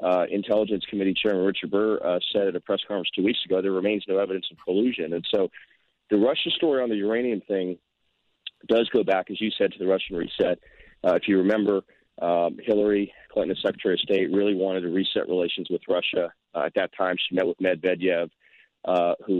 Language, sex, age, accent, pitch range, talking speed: English, male, 40-59, American, 90-105 Hz, 210 wpm